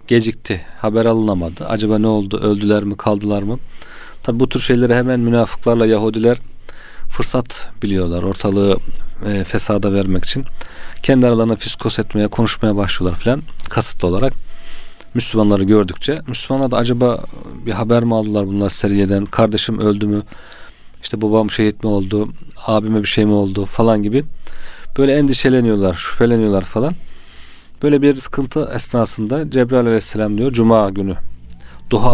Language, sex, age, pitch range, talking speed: Turkish, male, 40-59, 100-115 Hz, 135 wpm